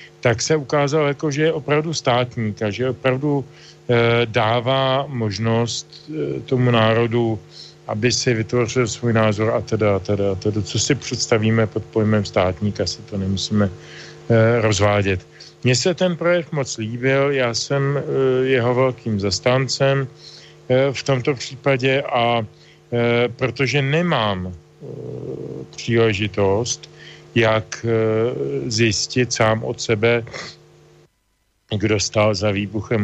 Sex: male